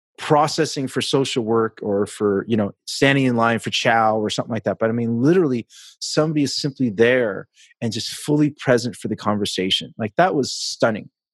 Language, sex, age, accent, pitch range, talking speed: English, male, 30-49, American, 115-150 Hz, 190 wpm